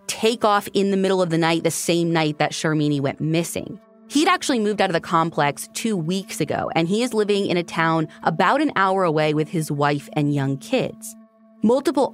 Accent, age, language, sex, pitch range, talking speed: American, 30-49, English, female, 155-225 Hz, 215 wpm